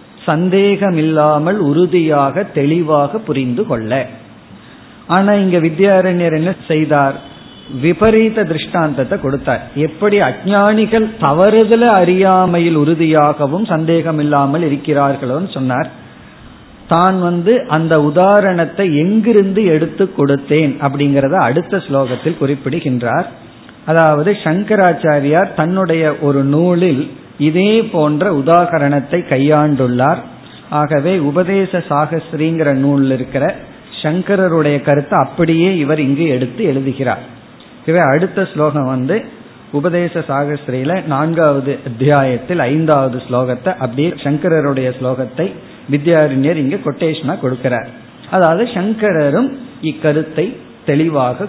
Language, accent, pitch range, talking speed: Tamil, native, 140-180 Hz, 85 wpm